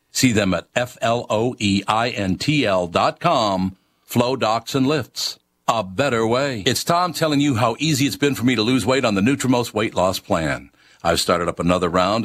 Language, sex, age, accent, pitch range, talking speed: English, male, 60-79, American, 105-135 Hz, 180 wpm